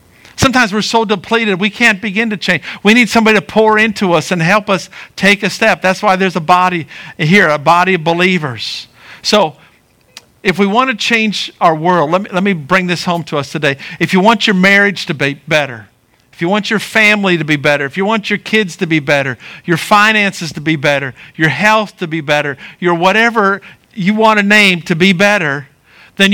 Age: 50-69